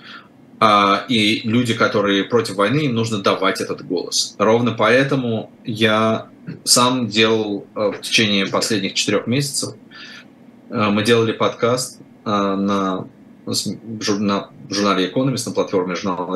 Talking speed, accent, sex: 125 wpm, native, male